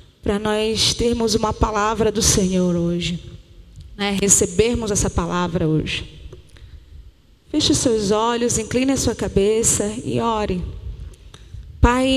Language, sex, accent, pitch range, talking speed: Portuguese, female, Brazilian, 190-275 Hz, 110 wpm